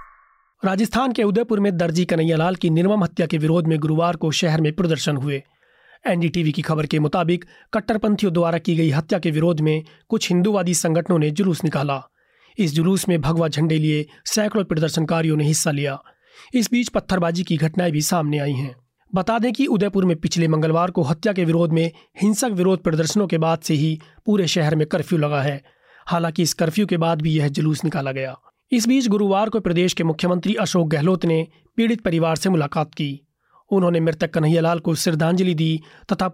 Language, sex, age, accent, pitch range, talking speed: Hindi, male, 30-49, native, 160-195 Hz, 190 wpm